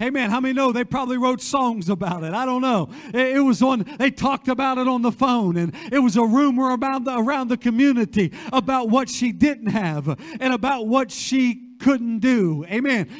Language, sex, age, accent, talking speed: English, male, 50-69, American, 200 wpm